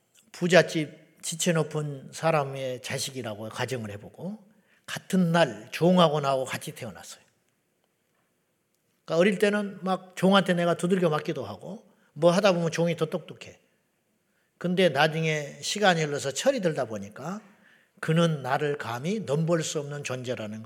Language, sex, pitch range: Korean, male, 135-185 Hz